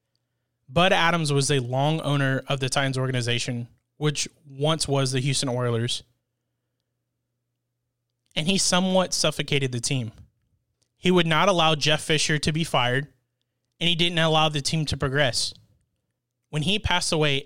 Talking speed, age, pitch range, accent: 150 wpm, 30-49, 125-160 Hz, American